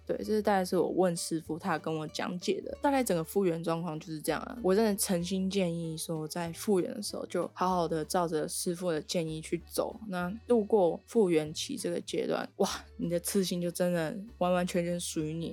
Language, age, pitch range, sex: Chinese, 20-39, 170-215 Hz, female